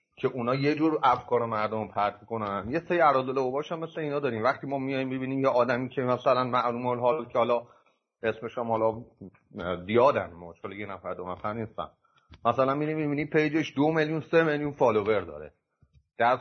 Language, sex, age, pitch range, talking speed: English, male, 30-49, 110-150 Hz, 180 wpm